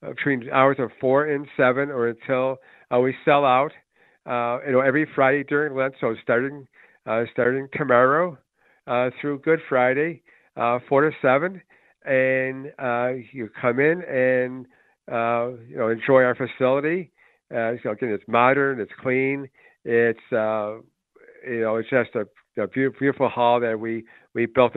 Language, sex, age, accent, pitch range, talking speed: English, male, 50-69, American, 115-130 Hz, 155 wpm